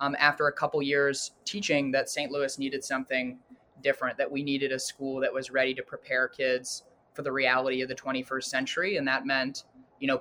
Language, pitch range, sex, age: English, 130-150 Hz, male, 20-39